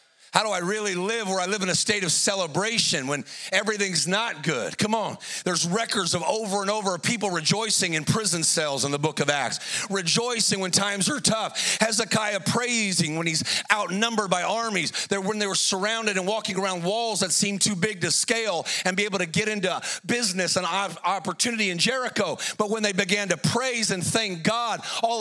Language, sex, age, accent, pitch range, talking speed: English, male, 40-59, American, 185-230 Hz, 200 wpm